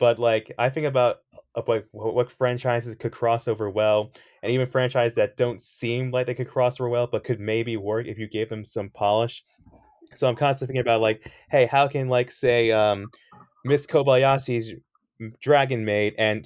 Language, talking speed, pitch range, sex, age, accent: English, 190 wpm, 110-130 Hz, male, 20-39, American